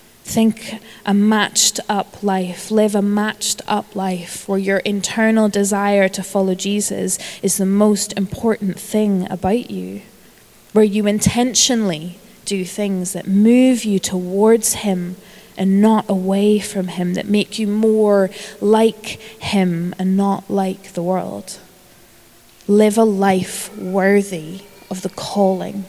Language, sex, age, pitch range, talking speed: English, female, 20-39, 185-210 Hz, 125 wpm